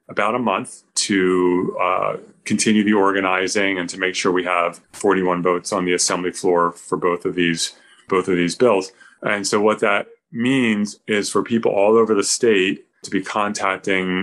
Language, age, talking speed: English, 30-49, 175 wpm